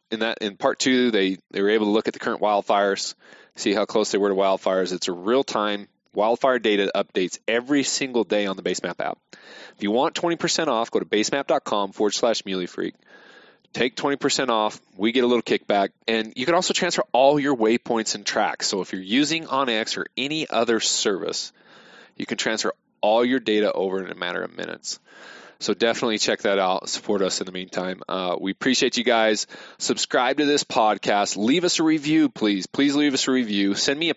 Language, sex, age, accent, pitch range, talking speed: English, male, 20-39, American, 100-140 Hz, 205 wpm